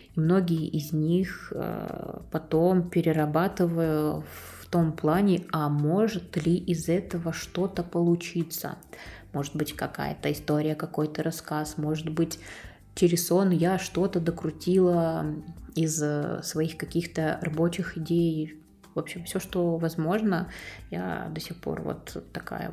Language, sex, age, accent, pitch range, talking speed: Russian, female, 20-39, native, 155-180 Hz, 120 wpm